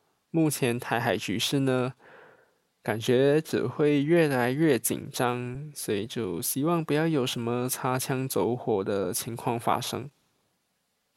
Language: Chinese